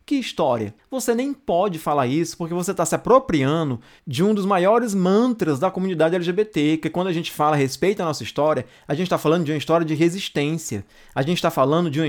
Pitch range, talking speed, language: 150-215 Hz, 225 wpm, Portuguese